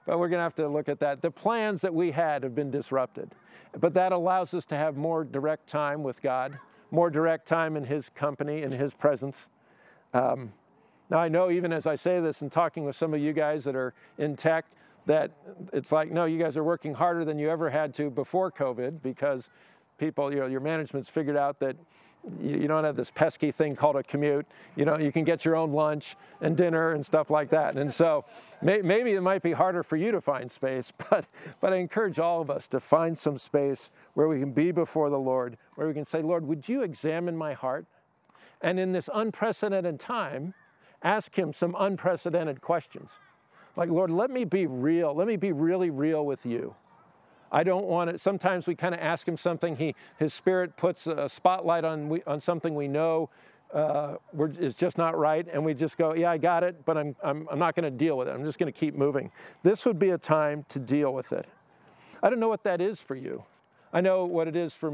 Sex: male